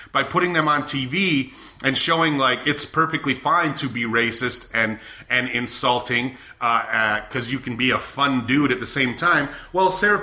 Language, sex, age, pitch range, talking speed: English, male, 30-49, 130-180 Hz, 190 wpm